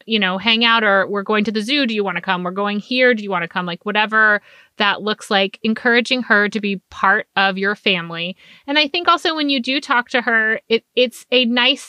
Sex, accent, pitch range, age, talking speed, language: female, American, 205-260 Hz, 30-49, 250 wpm, English